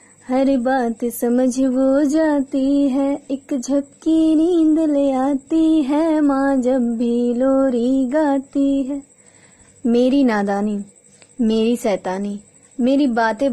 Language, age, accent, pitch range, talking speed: Hindi, 20-39, native, 240-285 Hz, 105 wpm